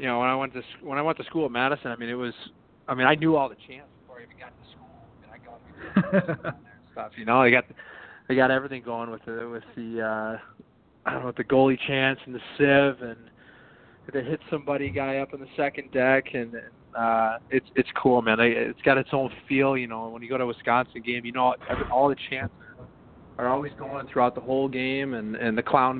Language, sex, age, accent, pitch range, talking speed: English, male, 20-39, American, 115-135 Hz, 240 wpm